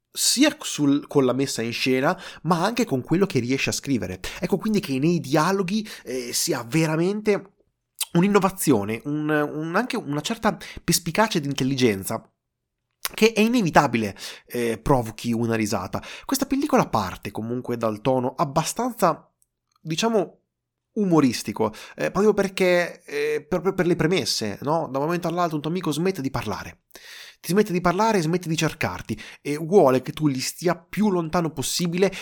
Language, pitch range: Italian, 120-180 Hz